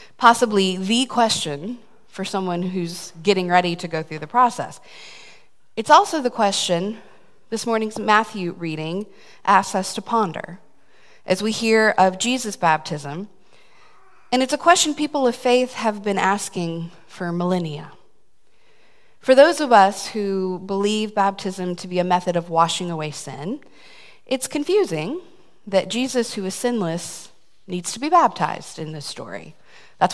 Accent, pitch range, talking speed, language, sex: American, 175-235 Hz, 145 wpm, English, female